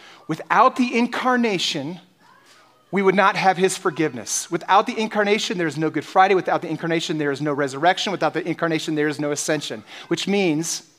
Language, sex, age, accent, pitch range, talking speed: English, male, 30-49, American, 160-195 Hz, 180 wpm